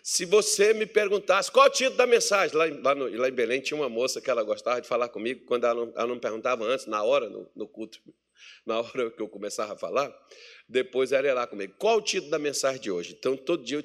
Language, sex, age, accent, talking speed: Portuguese, male, 50-69, Brazilian, 265 wpm